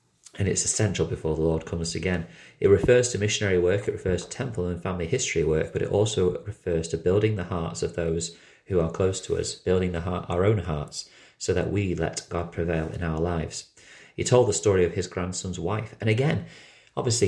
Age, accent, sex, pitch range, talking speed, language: 30-49, British, male, 85-105 Hz, 210 wpm, English